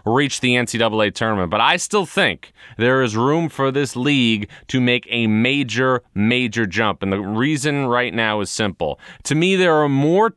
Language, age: English, 30-49